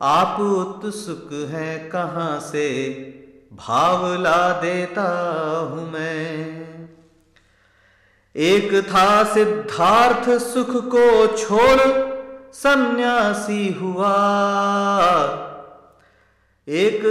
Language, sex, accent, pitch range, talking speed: Hindi, male, native, 160-210 Hz, 70 wpm